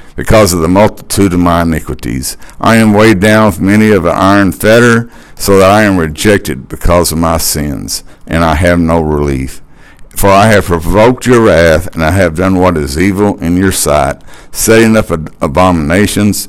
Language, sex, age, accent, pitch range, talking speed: English, male, 60-79, American, 85-110 Hz, 180 wpm